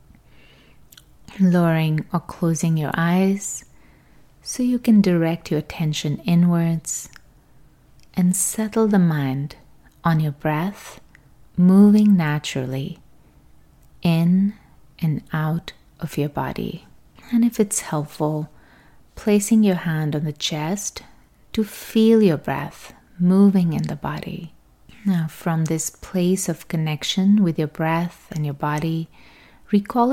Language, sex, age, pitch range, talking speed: English, female, 30-49, 150-200 Hz, 115 wpm